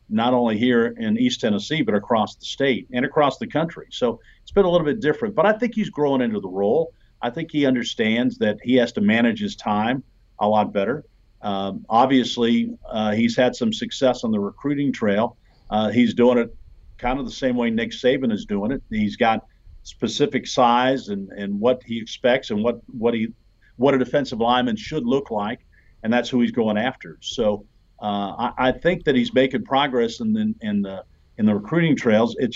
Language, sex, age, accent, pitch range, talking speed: English, male, 50-69, American, 105-170 Hz, 210 wpm